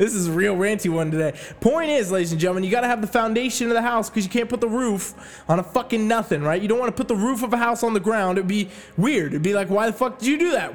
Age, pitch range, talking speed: 20-39, 190-240 Hz, 320 wpm